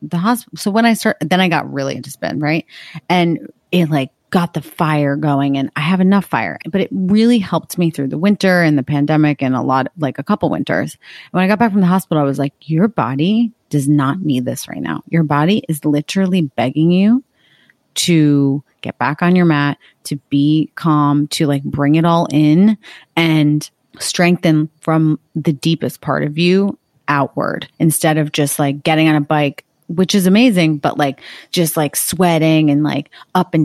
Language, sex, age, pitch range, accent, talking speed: English, female, 30-49, 145-175 Hz, American, 200 wpm